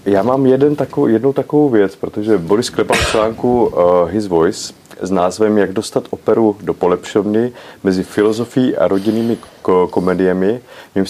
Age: 30-49